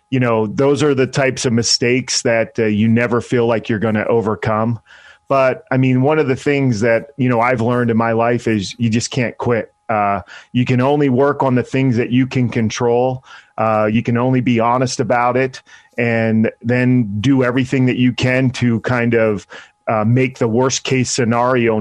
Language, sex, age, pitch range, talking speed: English, male, 30-49, 115-130 Hz, 205 wpm